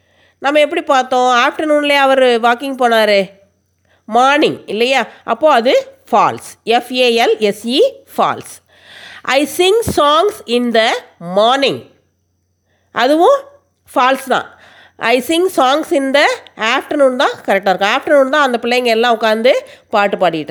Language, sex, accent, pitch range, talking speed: Tamil, female, native, 215-290 Hz, 115 wpm